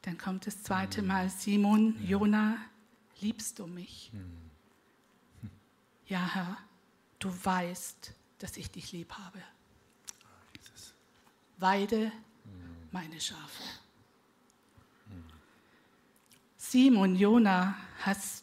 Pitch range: 185-225 Hz